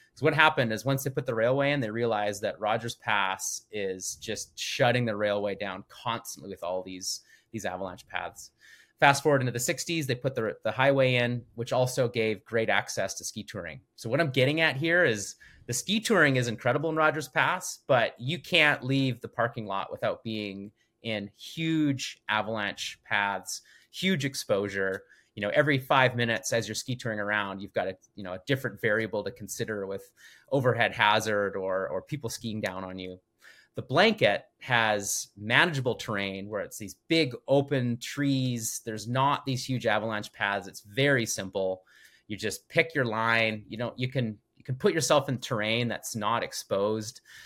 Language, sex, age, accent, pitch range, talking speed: English, male, 30-49, American, 105-135 Hz, 185 wpm